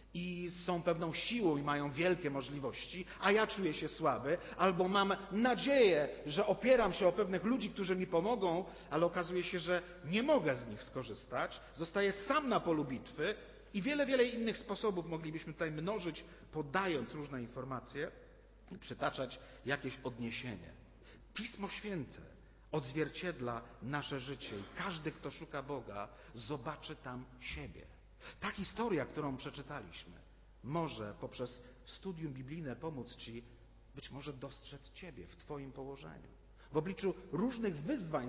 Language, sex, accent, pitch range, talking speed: Polish, male, native, 135-195 Hz, 140 wpm